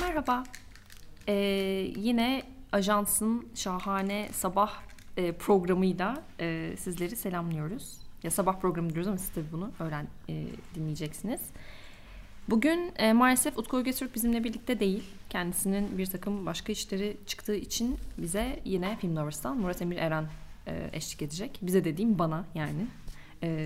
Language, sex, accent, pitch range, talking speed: Turkish, female, native, 170-230 Hz, 130 wpm